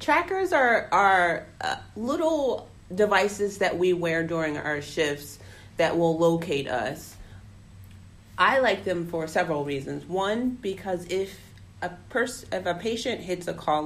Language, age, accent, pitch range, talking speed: English, 30-49, American, 145-195 Hz, 135 wpm